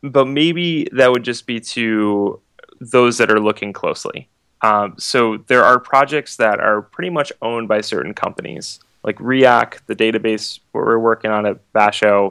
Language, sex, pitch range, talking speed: English, male, 105-125 Hz, 165 wpm